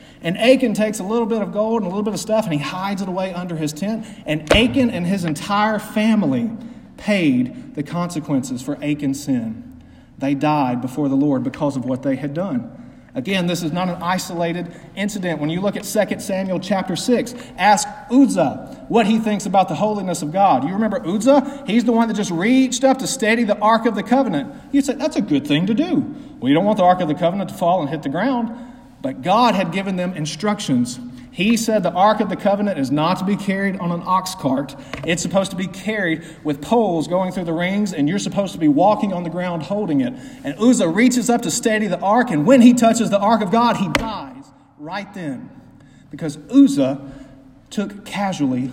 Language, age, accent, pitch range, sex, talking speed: English, 40-59, American, 155-230 Hz, male, 220 wpm